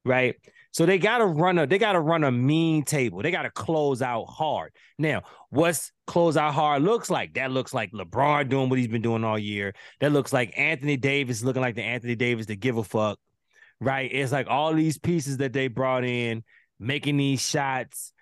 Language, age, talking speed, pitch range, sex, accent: English, 20-39, 215 wpm, 125-165 Hz, male, American